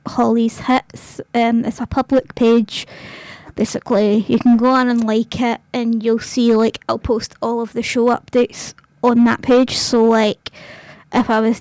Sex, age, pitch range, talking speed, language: female, 20-39, 230-250 Hz, 175 wpm, English